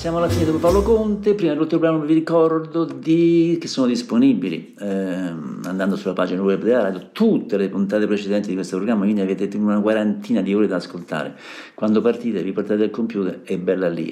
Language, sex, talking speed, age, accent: Italian, male, 195 wpm, 50-69, native